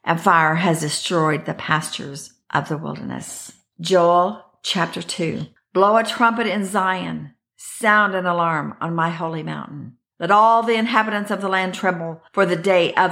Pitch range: 160-190 Hz